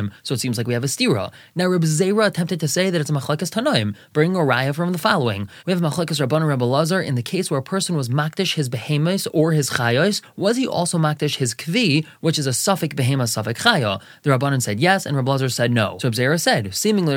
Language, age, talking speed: English, 20-39, 230 wpm